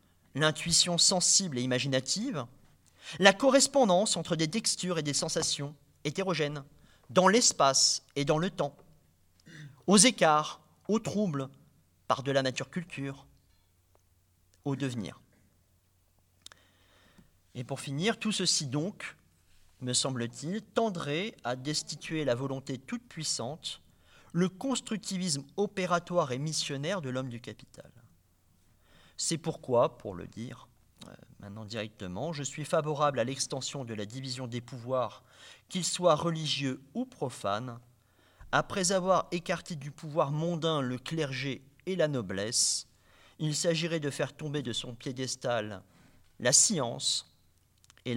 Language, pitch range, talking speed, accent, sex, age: French, 110-165 Hz, 120 wpm, French, male, 40-59